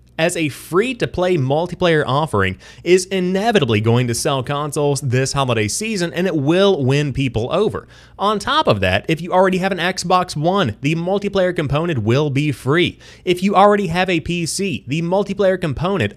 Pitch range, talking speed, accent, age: 130-175 Hz, 170 wpm, American, 30-49